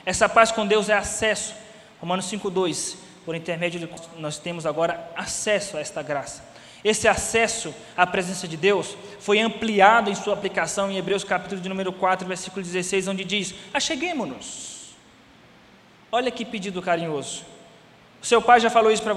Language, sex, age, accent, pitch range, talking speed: Portuguese, male, 20-39, Brazilian, 175-230 Hz, 160 wpm